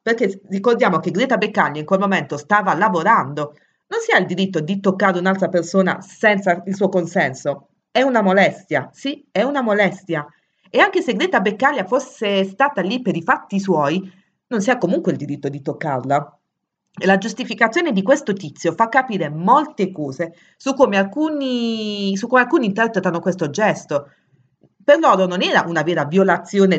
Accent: native